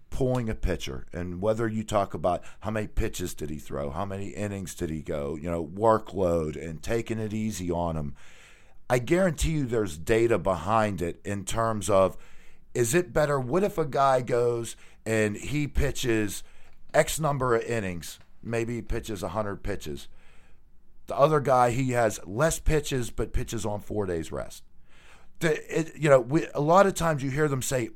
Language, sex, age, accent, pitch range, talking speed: English, male, 50-69, American, 100-140 Hz, 175 wpm